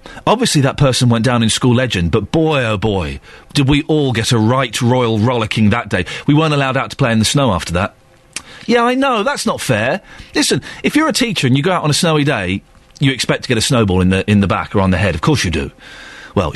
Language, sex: English, male